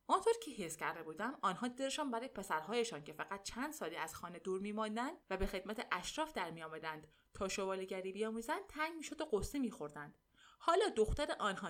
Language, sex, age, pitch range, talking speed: Persian, female, 20-39, 185-285 Hz, 180 wpm